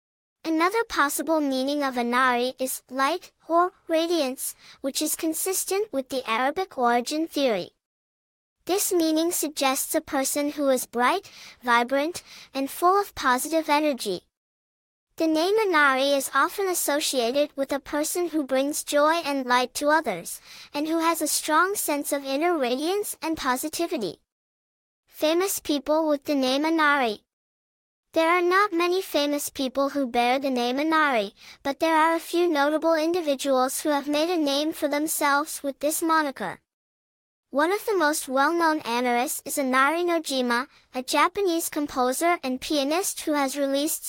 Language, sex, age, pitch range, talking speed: English, male, 10-29, 270-330 Hz, 150 wpm